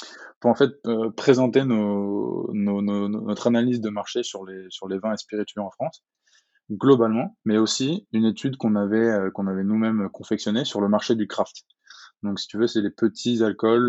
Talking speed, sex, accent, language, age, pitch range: 200 wpm, male, French, French, 20-39, 100-115 Hz